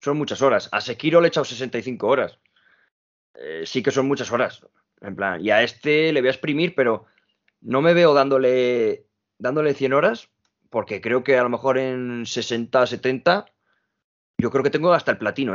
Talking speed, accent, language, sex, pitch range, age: 190 wpm, Spanish, Spanish, male, 120-155 Hz, 20-39